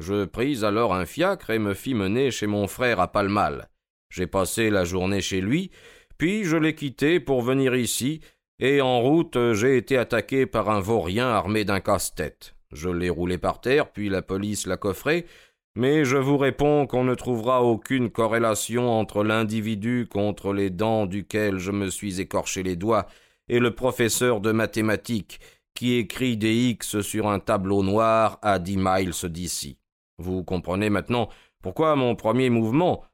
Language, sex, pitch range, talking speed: French, male, 95-125 Hz, 170 wpm